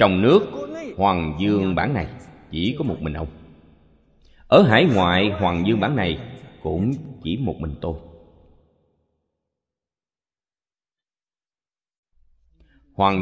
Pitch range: 80-100 Hz